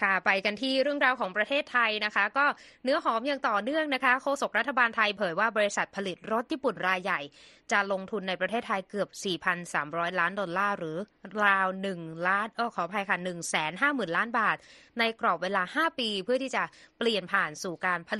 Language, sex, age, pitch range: Thai, female, 20-39, 185-240 Hz